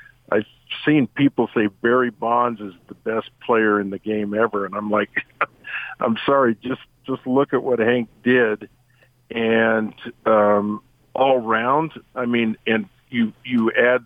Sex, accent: male, American